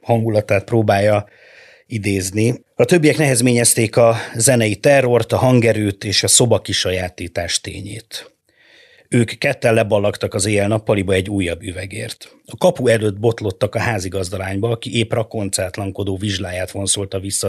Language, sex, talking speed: Hungarian, male, 125 wpm